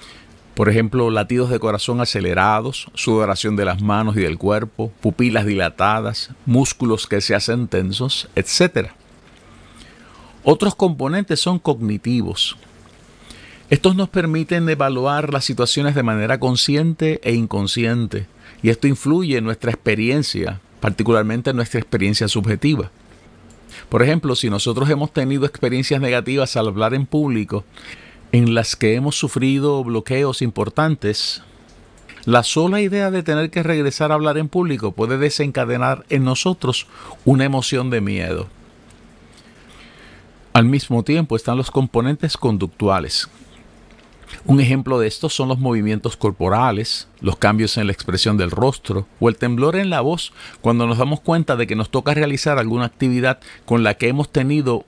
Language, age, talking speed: Spanish, 50-69, 140 wpm